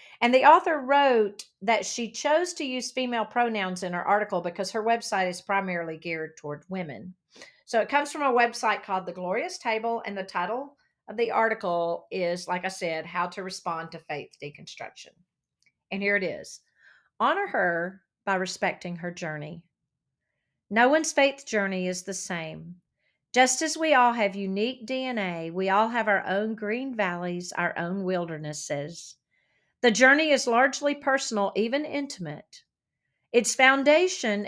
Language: English